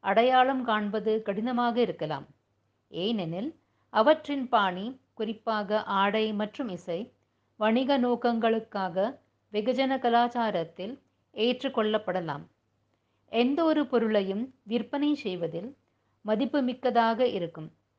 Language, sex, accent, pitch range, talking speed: English, female, Indian, 195-255 Hz, 80 wpm